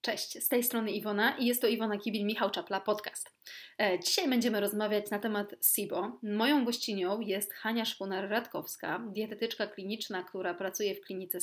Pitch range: 195-230 Hz